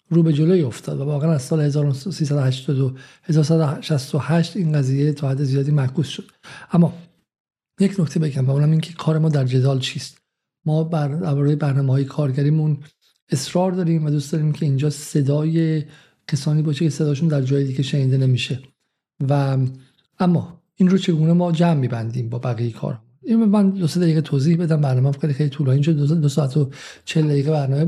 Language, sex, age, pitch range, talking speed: Persian, male, 50-69, 140-165 Hz, 170 wpm